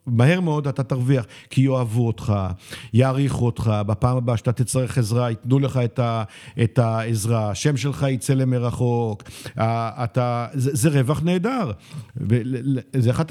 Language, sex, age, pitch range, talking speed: Hebrew, male, 50-69, 115-150 Hz, 130 wpm